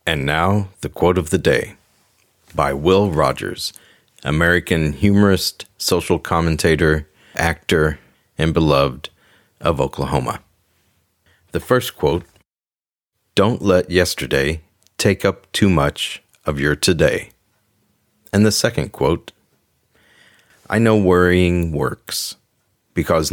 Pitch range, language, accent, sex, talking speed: 80-105 Hz, English, American, male, 105 wpm